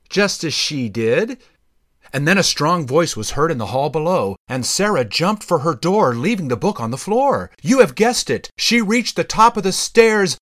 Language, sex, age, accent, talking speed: English, male, 40-59, American, 220 wpm